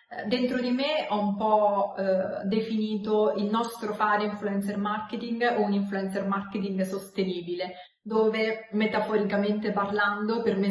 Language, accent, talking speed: Italian, native, 130 wpm